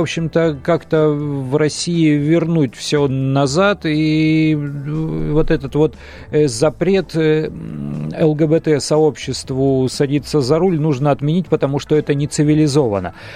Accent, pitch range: native, 130-160 Hz